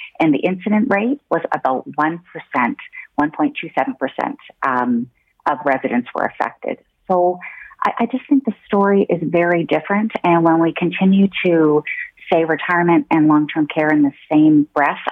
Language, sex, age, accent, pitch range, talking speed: English, female, 40-59, American, 145-195 Hz, 145 wpm